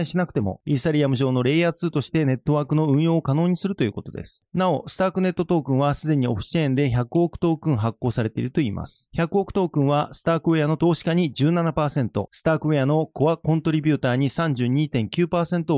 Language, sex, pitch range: Japanese, male, 125-165 Hz